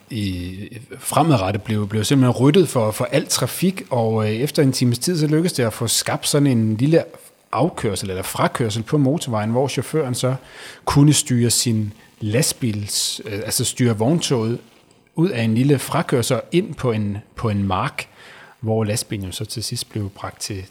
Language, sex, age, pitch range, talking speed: Danish, male, 30-49, 110-140 Hz, 175 wpm